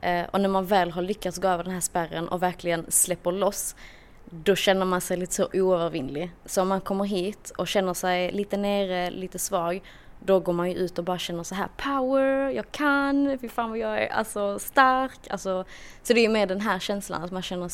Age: 20-39